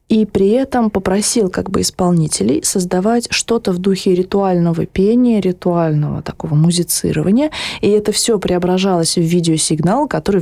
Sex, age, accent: female, 20-39, native